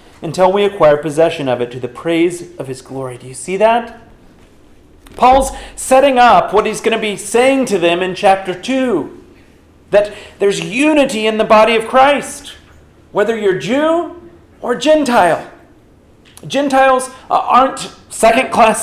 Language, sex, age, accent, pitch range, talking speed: English, male, 40-59, American, 185-265 Hz, 145 wpm